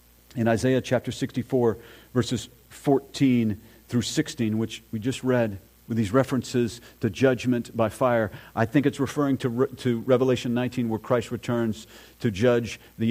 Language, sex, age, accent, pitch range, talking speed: English, male, 40-59, American, 95-125 Hz, 150 wpm